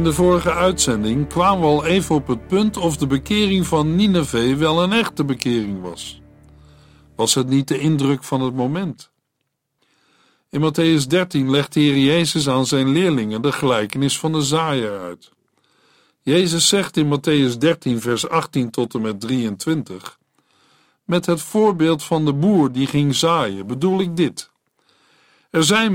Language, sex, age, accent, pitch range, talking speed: Dutch, male, 60-79, Dutch, 125-170 Hz, 160 wpm